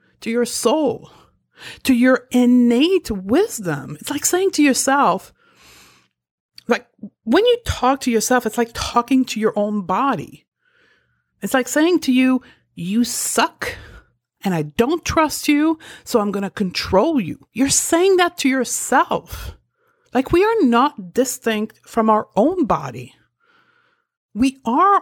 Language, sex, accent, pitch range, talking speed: English, female, American, 220-315 Hz, 135 wpm